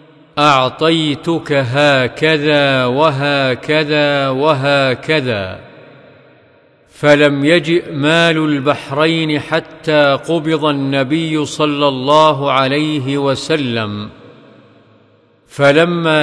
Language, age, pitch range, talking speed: Arabic, 50-69, 140-155 Hz, 60 wpm